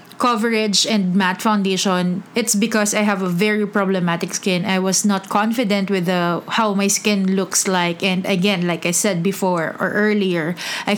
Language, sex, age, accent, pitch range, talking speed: English, female, 20-39, Filipino, 200-235 Hz, 170 wpm